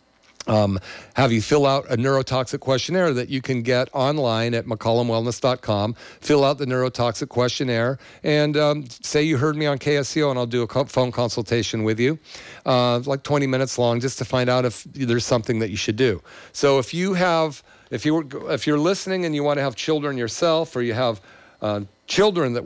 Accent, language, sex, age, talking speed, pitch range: American, English, male, 50-69, 195 wpm, 110-140 Hz